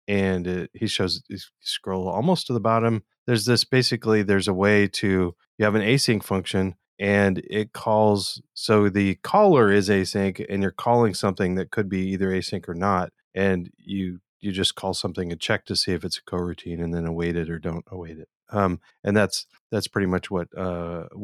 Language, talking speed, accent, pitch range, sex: English, 200 wpm, American, 90-110 Hz, male